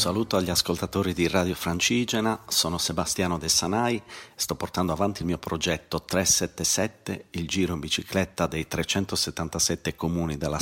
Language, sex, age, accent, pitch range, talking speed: Italian, male, 40-59, native, 80-95 Hz, 145 wpm